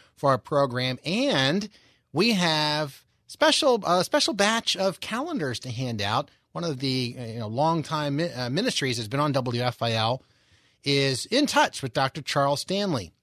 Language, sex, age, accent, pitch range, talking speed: English, male, 30-49, American, 125-190 Hz, 150 wpm